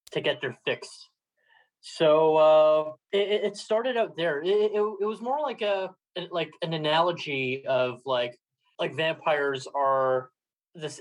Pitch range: 145-205 Hz